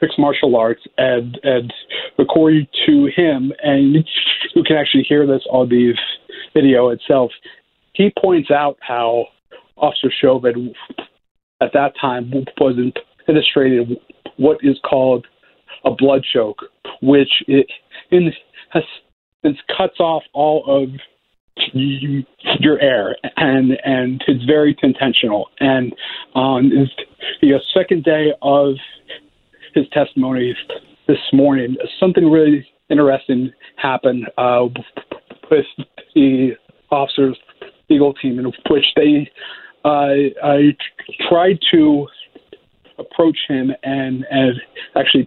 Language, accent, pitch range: English, American, 130-150 Hz